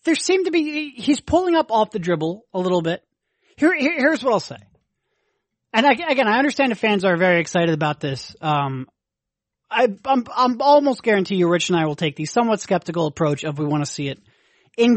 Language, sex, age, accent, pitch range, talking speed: English, male, 30-49, American, 170-230 Hz, 215 wpm